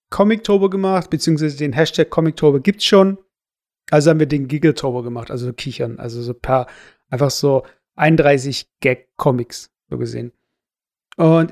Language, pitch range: German, 150-180 Hz